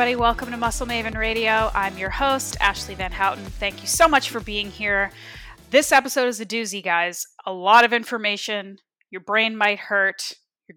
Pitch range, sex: 190-235 Hz, female